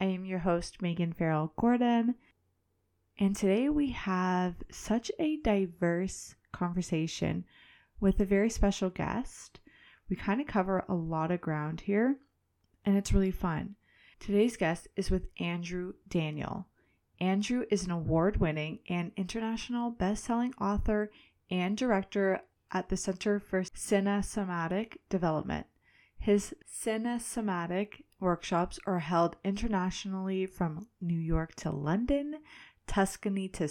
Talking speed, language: 120 wpm, English